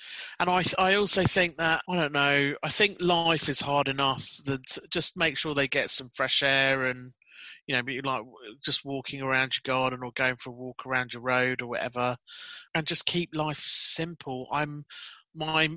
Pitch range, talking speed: 130-160 Hz, 195 wpm